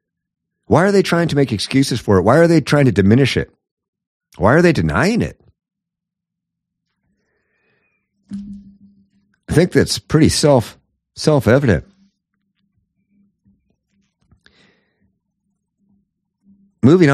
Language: English